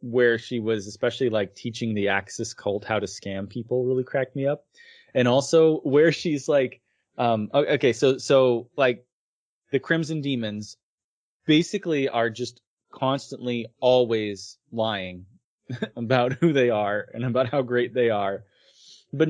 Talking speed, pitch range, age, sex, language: 145 wpm, 110-140 Hz, 20-39, male, English